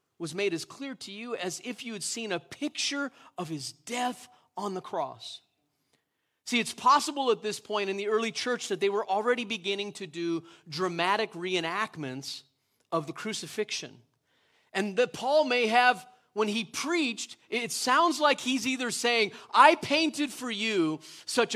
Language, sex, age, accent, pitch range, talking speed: English, male, 40-59, American, 195-275 Hz, 165 wpm